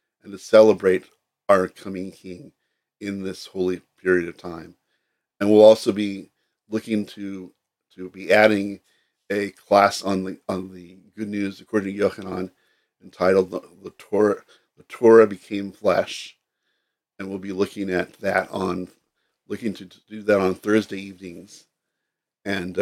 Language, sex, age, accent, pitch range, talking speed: English, male, 50-69, American, 95-110 Hz, 140 wpm